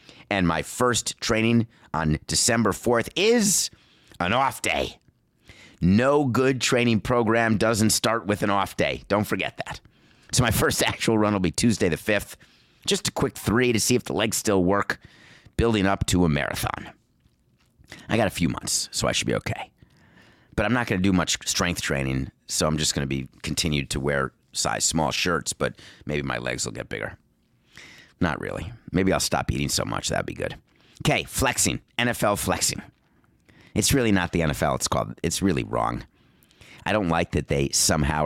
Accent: American